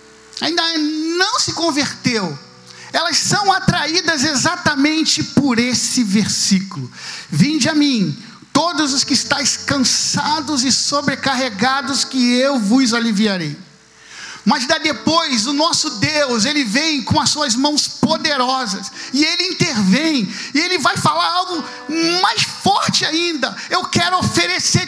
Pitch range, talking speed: 210-305 Hz, 125 wpm